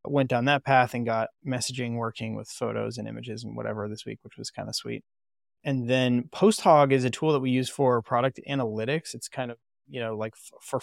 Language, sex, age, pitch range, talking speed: English, male, 20-39, 115-135 Hz, 225 wpm